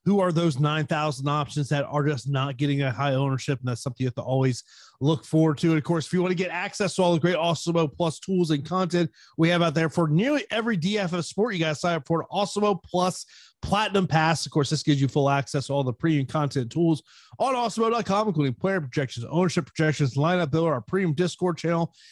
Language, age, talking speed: English, 30-49, 240 wpm